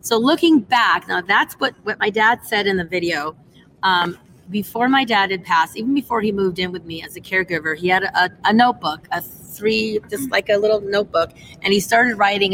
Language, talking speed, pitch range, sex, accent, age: English, 220 wpm, 175-215 Hz, female, American, 30-49